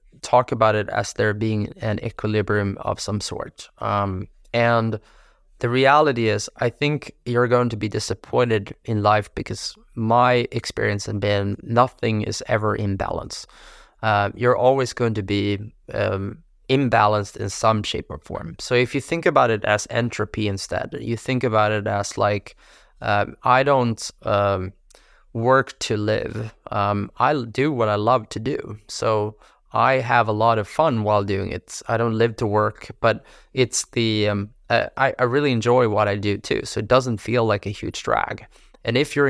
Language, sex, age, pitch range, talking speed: English, male, 20-39, 105-125 Hz, 175 wpm